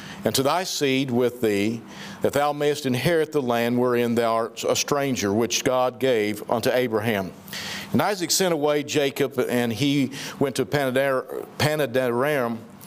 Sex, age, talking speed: male, 50-69, 150 wpm